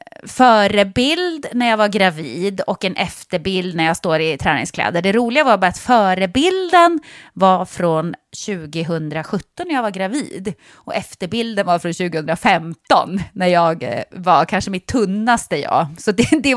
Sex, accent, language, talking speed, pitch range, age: female, Swedish, English, 150 wpm, 180-255 Hz, 30-49